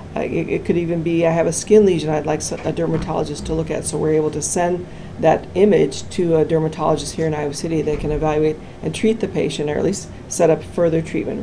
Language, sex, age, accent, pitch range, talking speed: English, female, 40-59, American, 150-175 Hz, 235 wpm